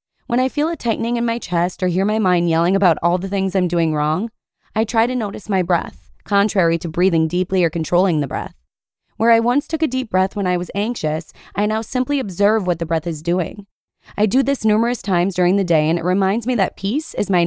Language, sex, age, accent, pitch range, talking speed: English, female, 20-39, American, 170-220 Hz, 240 wpm